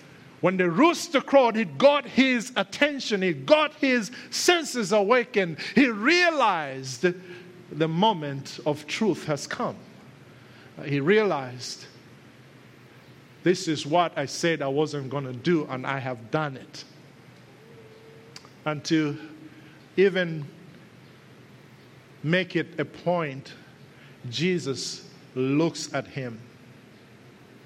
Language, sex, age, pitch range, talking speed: English, male, 50-69, 130-180 Hz, 105 wpm